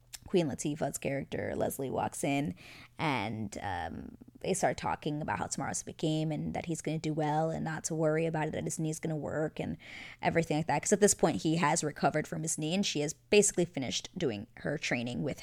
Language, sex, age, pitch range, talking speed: English, female, 20-39, 150-180 Hz, 225 wpm